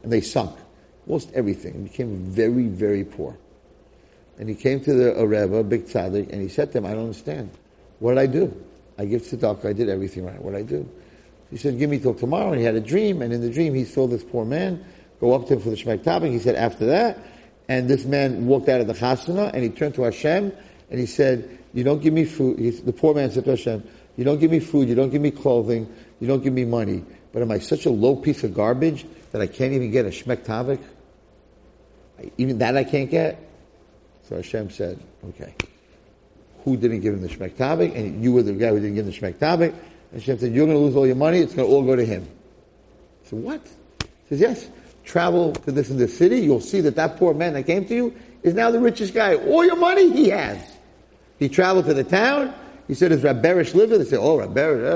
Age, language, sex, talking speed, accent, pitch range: 50-69, English, male, 240 wpm, American, 115-160 Hz